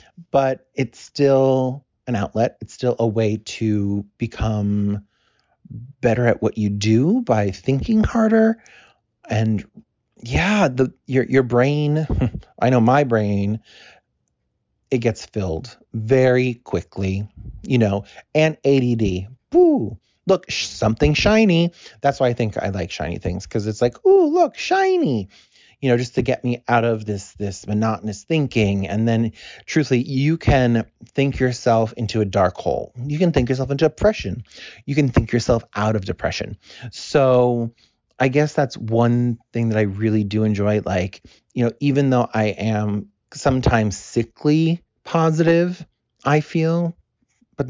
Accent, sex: American, male